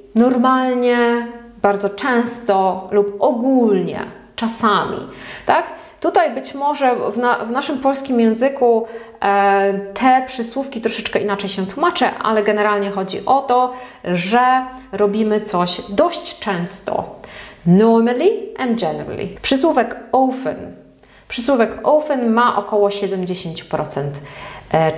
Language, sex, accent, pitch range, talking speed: Polish, female, native, 200-255 Hz, 100 wpm